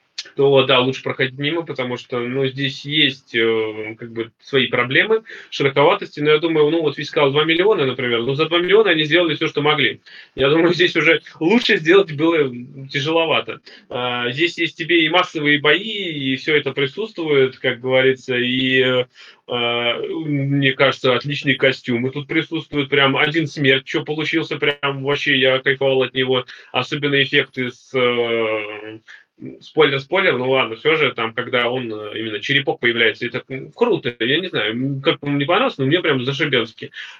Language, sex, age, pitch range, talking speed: Russian, male, 20-39, 130-155 Hz, 165 wpm